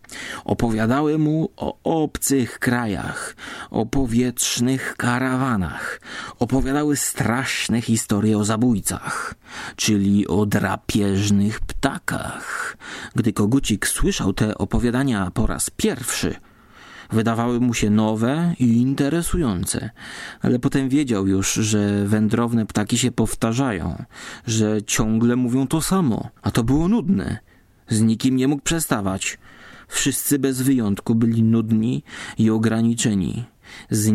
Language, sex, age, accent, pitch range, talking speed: Polish, male, 30-49, native, 110-130 Hz, 110 wpm